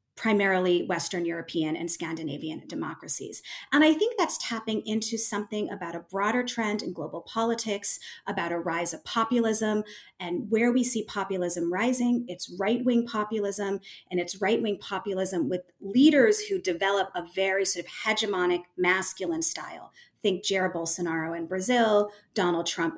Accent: American